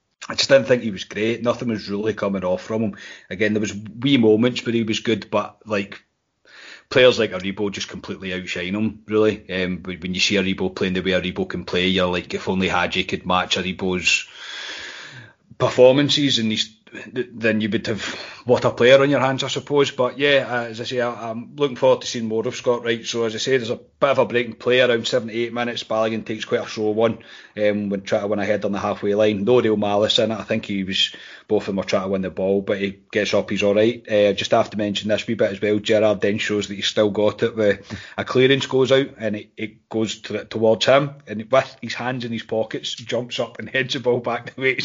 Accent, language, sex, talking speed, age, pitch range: British, English, male, 250 wpm, 30-49, 105-125 Hz